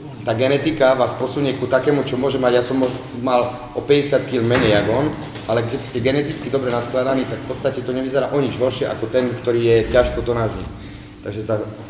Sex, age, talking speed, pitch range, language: male, 30-49, 200 wpm, 100-120 Hz, Czech